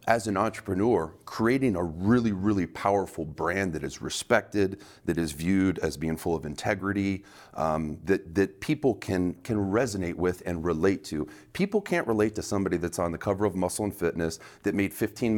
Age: 30-49